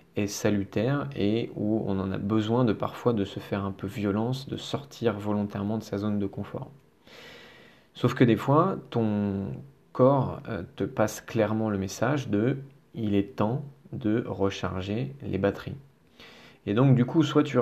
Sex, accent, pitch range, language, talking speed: male, French, 100-130 Hz, French, 165 wpm